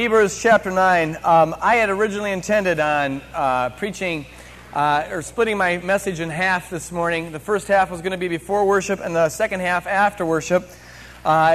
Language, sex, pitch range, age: English, male, 155-210 Hz, 30-49